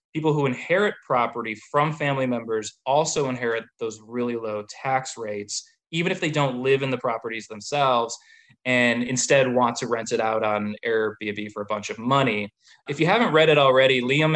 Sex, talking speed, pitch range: male, 185 wpm, 115-140 Hz